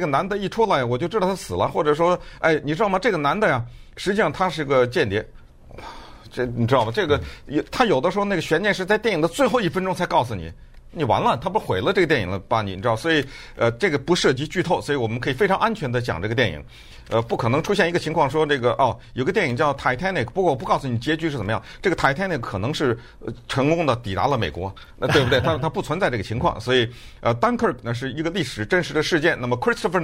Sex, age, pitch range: male, 50-69, 115-165 Hz